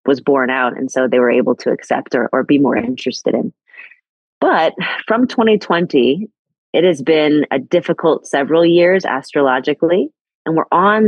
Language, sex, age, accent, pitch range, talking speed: English, female, 30-49, American, 135-170 Hz, 160 wpm